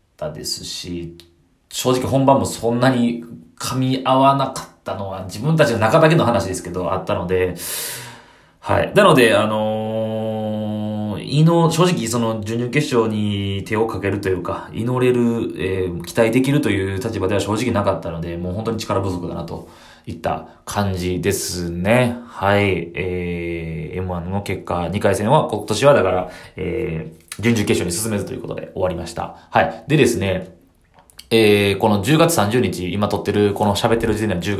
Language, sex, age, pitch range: Japanese, male, 20-39, 90-120 Hz